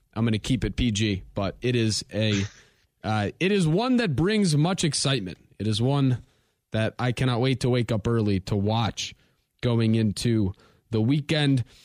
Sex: male